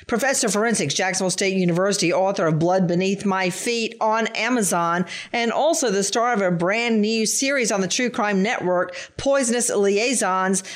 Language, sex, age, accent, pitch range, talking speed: English, female, 50-69, American, 185-235 Hz, 160 wpm